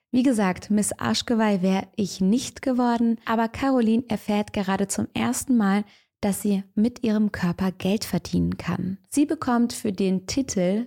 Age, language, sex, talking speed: 20-39, German, female, 155 wpm